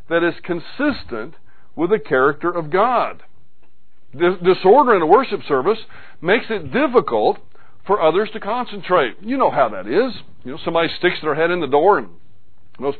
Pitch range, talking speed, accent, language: 140-180 Hz, 165 wpm, American, English